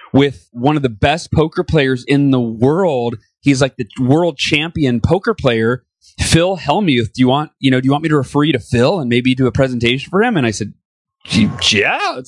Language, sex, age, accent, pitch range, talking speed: English, male, 30-49, American, 115-150 Hz, 220 wpm